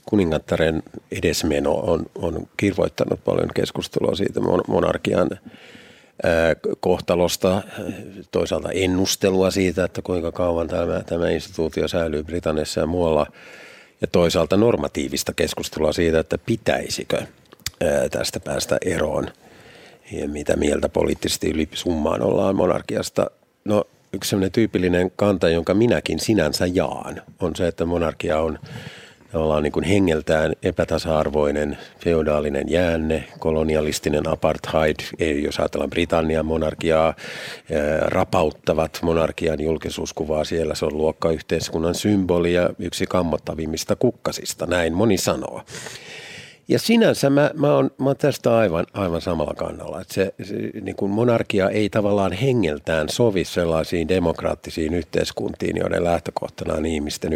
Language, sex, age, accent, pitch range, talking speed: Finnish, male, 50-69, native, 80-95 Hz, 115 wpm